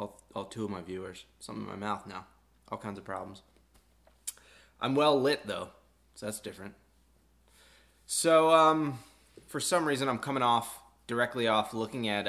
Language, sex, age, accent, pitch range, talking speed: English, male, 20-39, American, 90-135 Hz, 165 wpm